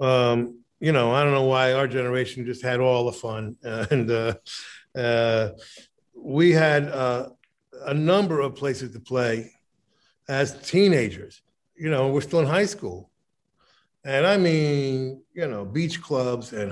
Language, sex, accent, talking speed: English, male, American, 155 wpm